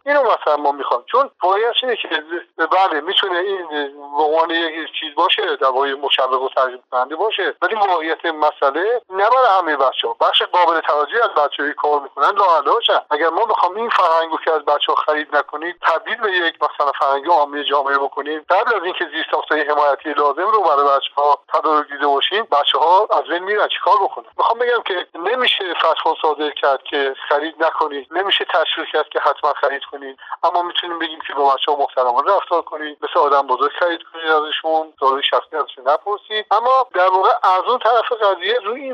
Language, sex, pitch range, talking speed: Persian, male, 145-185 Hz, 185 wpm